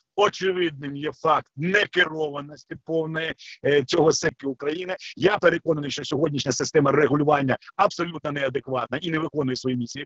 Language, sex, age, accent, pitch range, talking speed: Ukrainian, male, 50-69, native, 130-155 Hz, 125 wpm